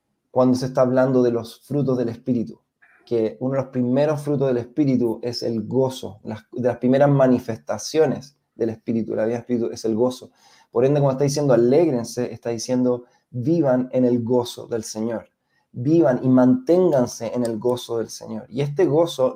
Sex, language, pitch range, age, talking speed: male, Spanish, 120-135 Hz, 20-39, 185 wpm